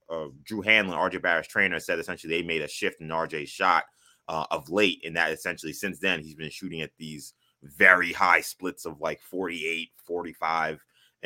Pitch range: 80-100 Hz